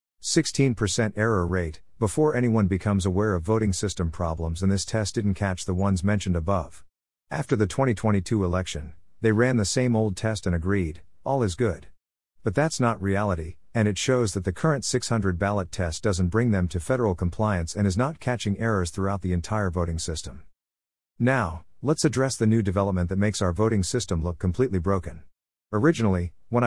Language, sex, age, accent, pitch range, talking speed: English, male, 50-69, American, 90-115 Hz, 180 wpm